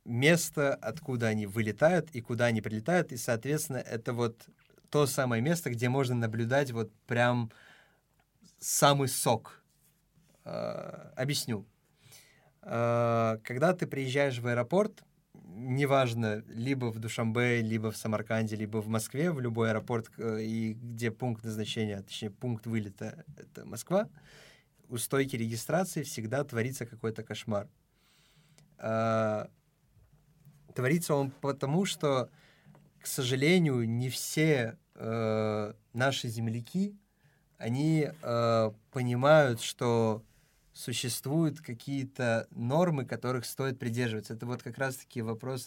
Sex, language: male, Russian